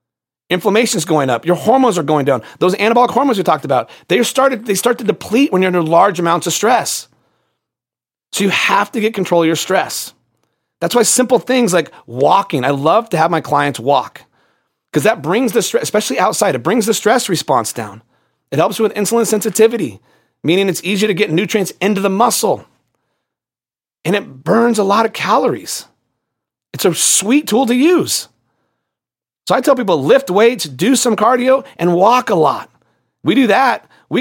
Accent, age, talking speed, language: American, 30-49, 190 wpm, English